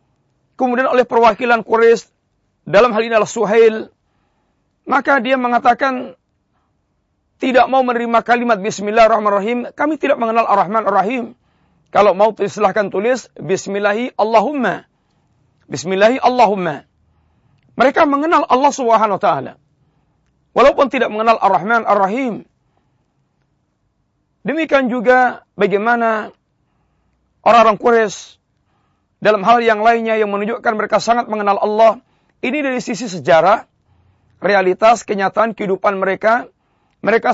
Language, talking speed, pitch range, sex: Malay, 110 wpm, 200-245 Hz, male